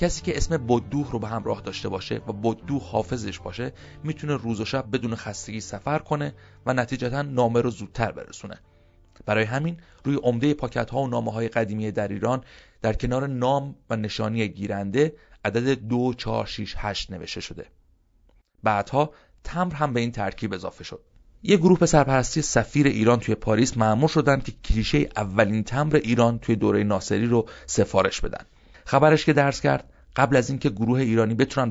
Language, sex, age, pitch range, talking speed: Persian, male, 30-49, 110-140 Hz, 170 wpm